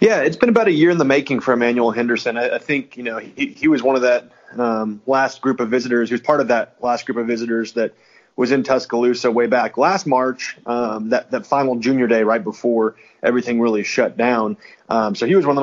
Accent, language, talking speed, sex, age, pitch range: American, English, 240 wpm, male, 30-49, 110-125 Hz